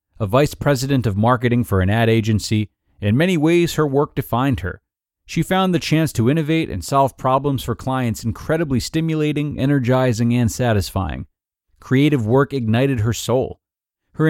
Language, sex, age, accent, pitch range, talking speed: English, male, 30-49, American, 110-160 Hz, 160 wpm